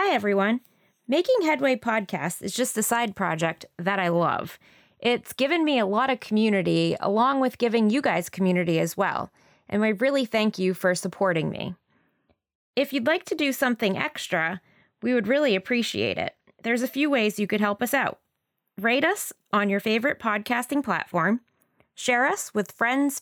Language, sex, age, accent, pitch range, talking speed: English, female, 20-39, American, 190-260 Hz, 175 wpm